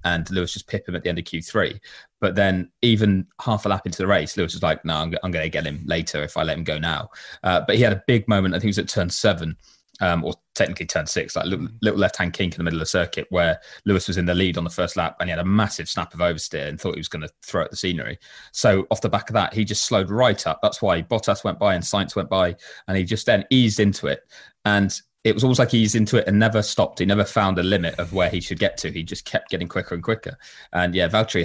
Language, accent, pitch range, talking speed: English, British, 85-105 Hz, 295 wpm